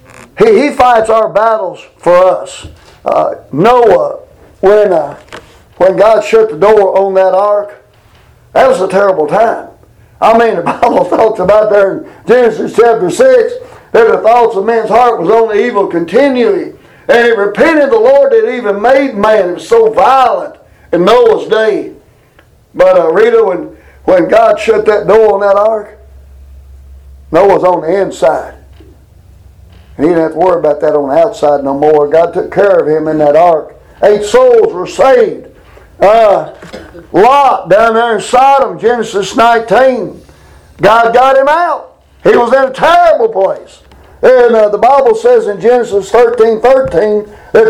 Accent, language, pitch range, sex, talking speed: American, English, 200-330 Hz, male, 160 wpm